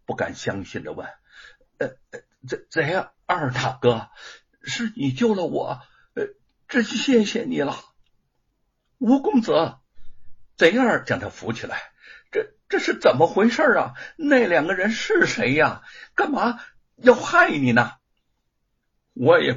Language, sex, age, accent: Chinese, male, 60-79, native